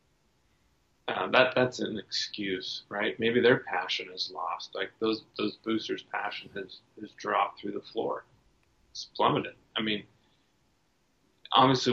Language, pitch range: English, 100-120 Hz